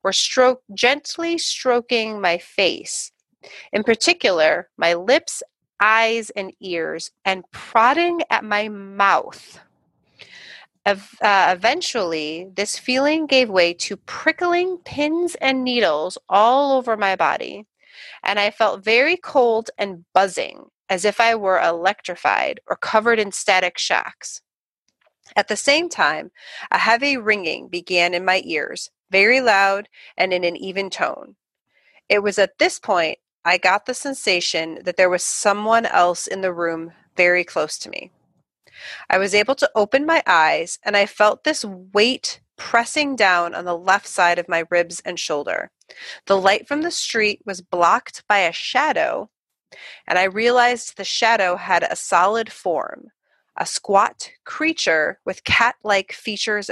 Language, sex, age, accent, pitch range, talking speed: English, female, 30-49, American, 185-255 Hz, 145 wpm